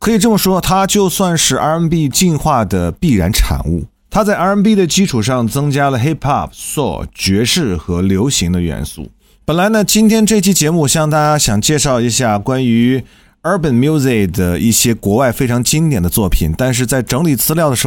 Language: Chinese